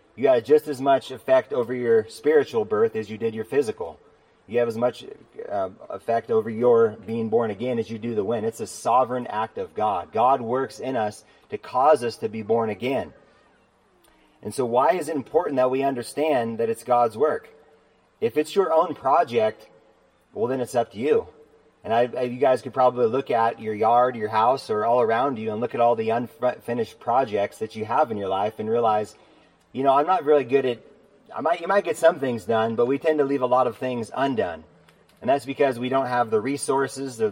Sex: male